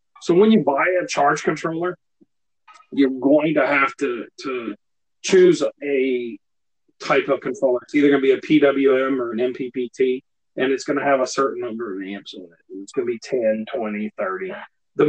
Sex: male